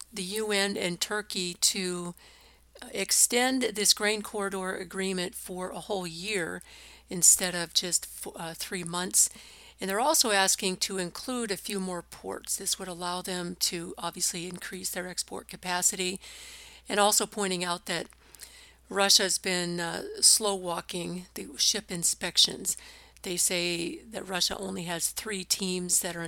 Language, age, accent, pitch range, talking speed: English, 50-69, American, 175-200 Hz, 140 wpm